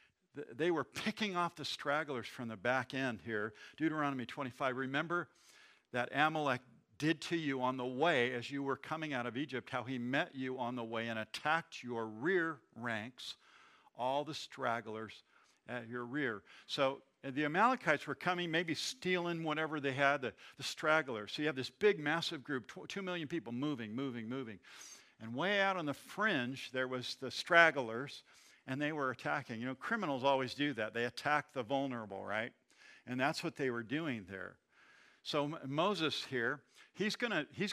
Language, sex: English, male